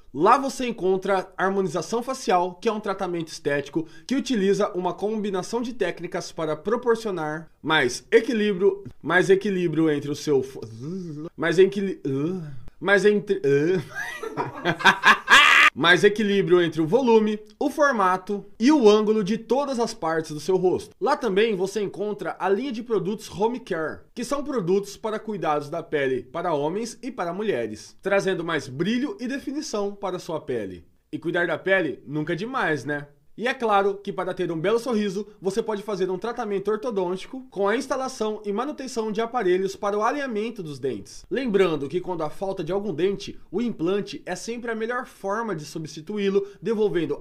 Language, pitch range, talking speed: Portuguese, 175-230 Hz, 165 wpm